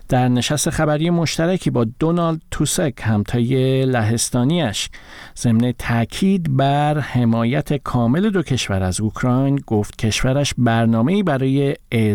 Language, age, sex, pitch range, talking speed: Persian, 50-69, male, 115-150 Hz, 110 wpm